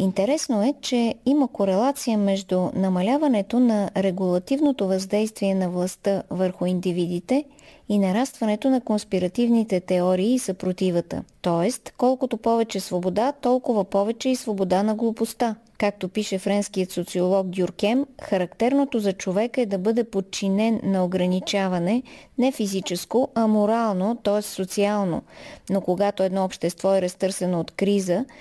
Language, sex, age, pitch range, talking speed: Bulgarian, female, 20-39, 190-240 Hz, 125 wpm